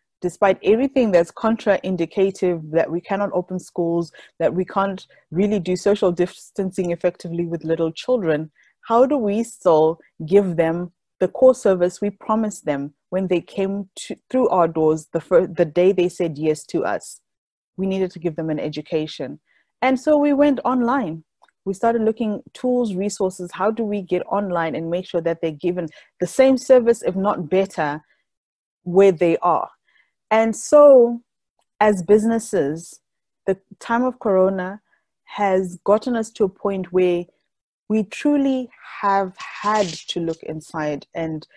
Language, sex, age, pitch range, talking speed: English, female, 20-39, 165-210 Hz, 155 wpm